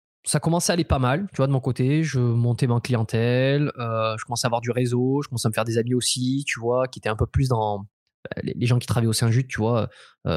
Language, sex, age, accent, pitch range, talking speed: French, male, 20-39, French, 120-160 Hz, 280 wpm